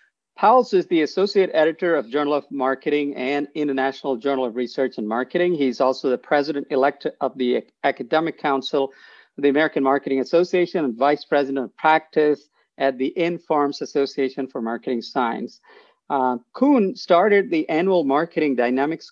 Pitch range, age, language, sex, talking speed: 135-160 Hz, 50-69, English, male, 150 wpm